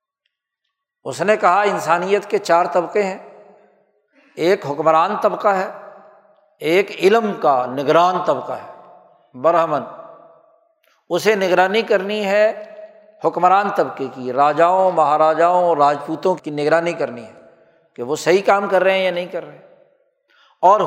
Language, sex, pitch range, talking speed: Urdu, male, 165-215 Hz, 130 wpm